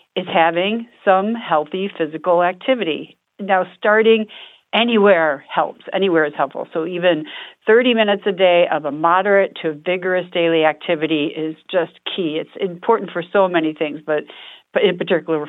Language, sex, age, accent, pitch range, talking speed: English, female, 50-69, American, 155-195 Hz, 145 wpm